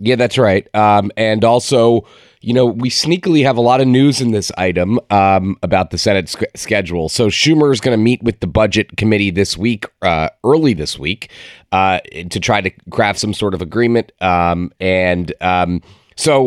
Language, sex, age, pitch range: English, male, 30-49, 95-125 Hz